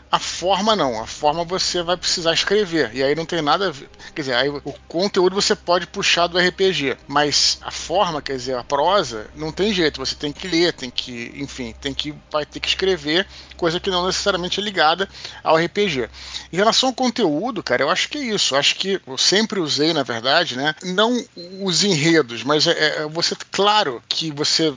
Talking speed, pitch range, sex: 210 wpm, 145-190 Hz, male